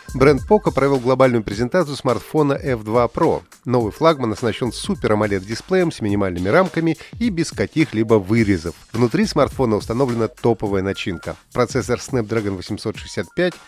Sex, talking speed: male, 125 wpm